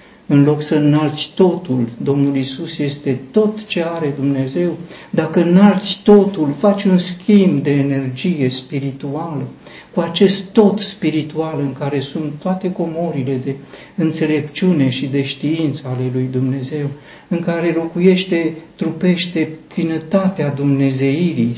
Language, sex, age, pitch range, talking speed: Romanian, male, 60-79, 140-185 Hz, 120 wpm